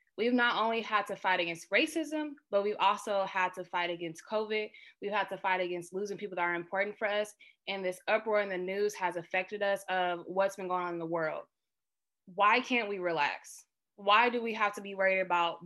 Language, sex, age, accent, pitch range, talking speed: English, female, 20-39, American, 185-235 Hz, 220 wpm